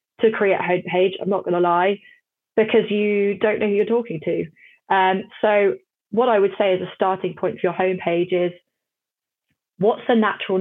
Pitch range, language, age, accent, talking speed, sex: 180-210 Hz, English, 20-39, British, 190 wpm, female